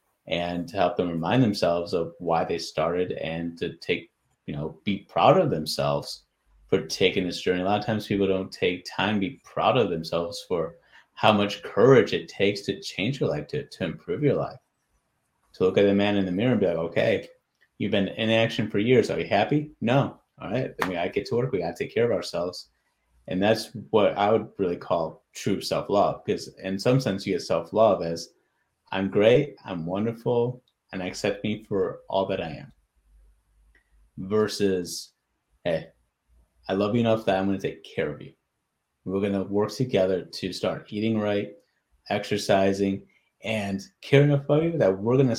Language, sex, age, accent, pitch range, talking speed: English, male, 30-49, American, 85-105 Hz, 200 wpm